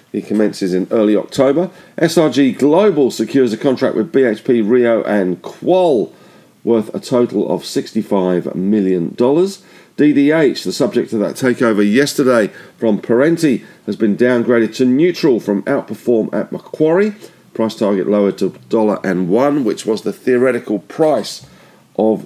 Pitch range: 105-140 Hz